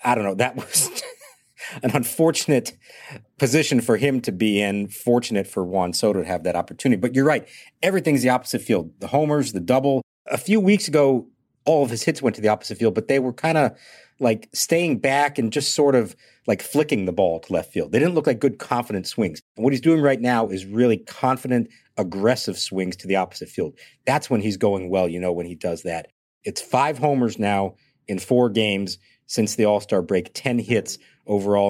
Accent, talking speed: American, 210 wpm